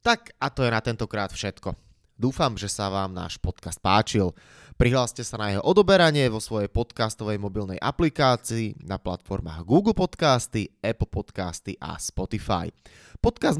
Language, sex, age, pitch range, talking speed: Slovak, male, 20-39, 95-130 Hz, 145 wpm